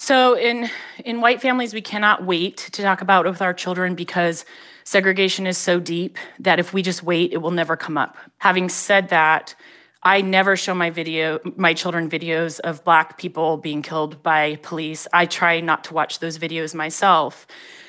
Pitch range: 165-200 Hz